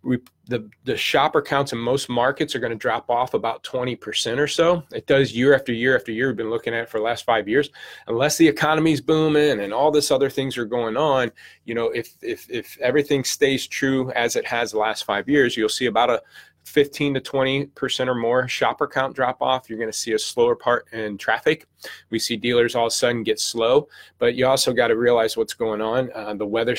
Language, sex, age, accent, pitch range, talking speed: English, male, 30-49, American, 110-145 Hz, 235 wpm